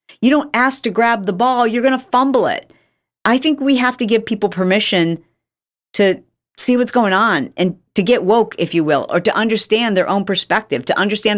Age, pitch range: 40-59, 175-230 Hz